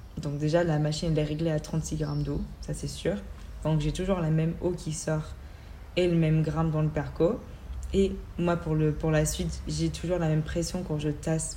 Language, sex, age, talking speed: French, female, 20-39, 230 wpm